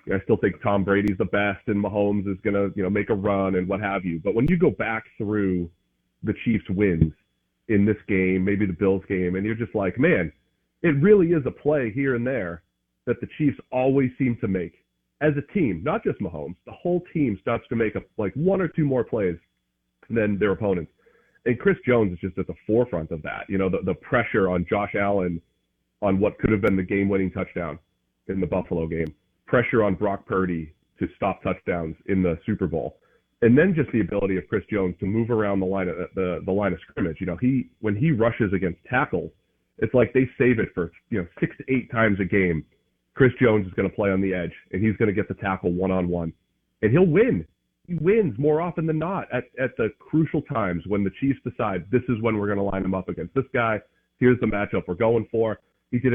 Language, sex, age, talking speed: English, male, 30-49, 230 wpm